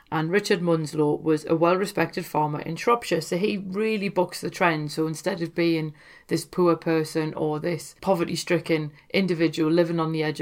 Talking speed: 175 wpm